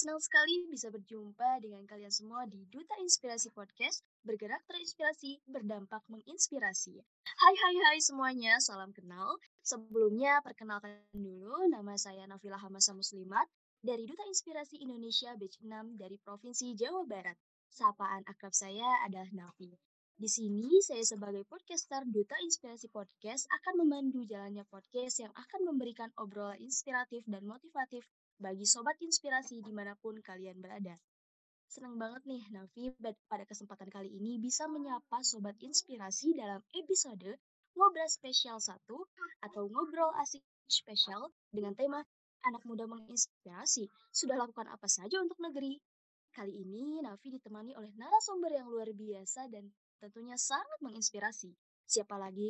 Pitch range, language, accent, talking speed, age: 205-285 Hz, Indonesian, native, 135 wpm, 20-39